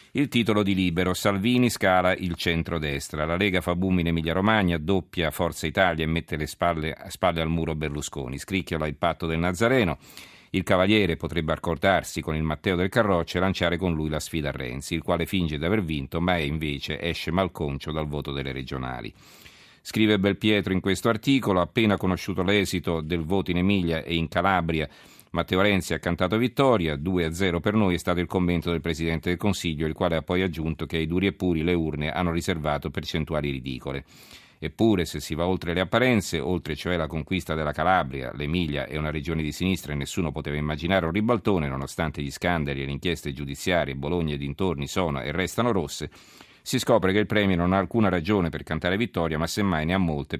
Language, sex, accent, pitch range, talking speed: Italian, male, native, 75-95 Hz, 200 wpm